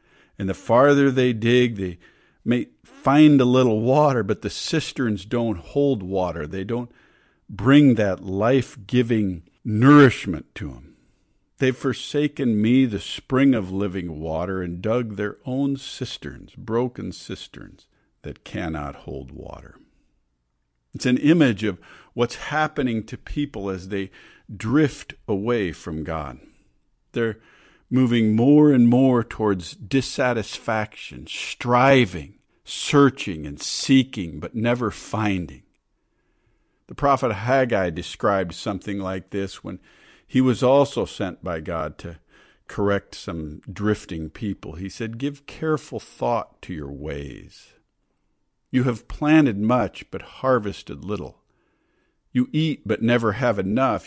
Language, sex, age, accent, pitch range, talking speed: English, male, 50-69, American, 95-130 Hz, 125 wpm